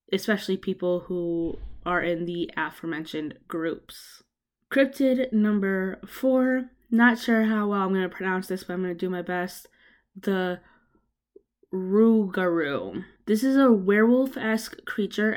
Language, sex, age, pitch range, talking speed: English, female, 20-39, 180-220 Hz, 135 wpm